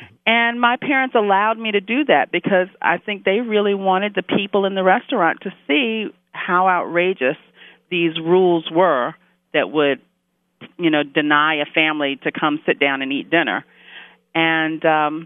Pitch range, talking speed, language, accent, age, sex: 160-205 Hz, 165 wpm, English, American, 40-59, female